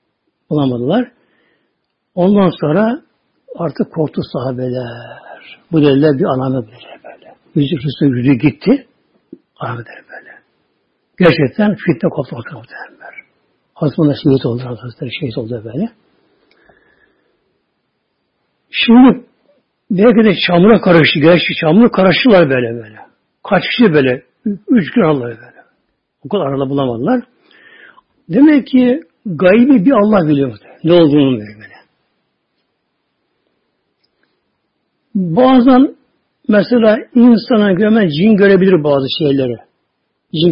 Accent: native